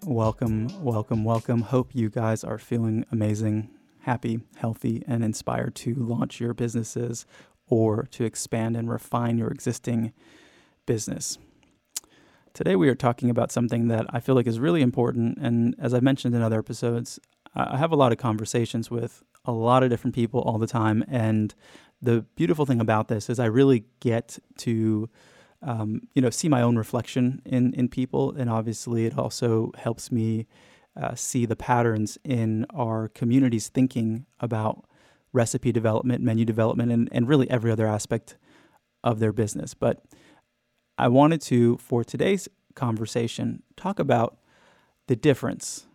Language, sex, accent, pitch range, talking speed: English, male, American, 115-125 Hz, 155 wpm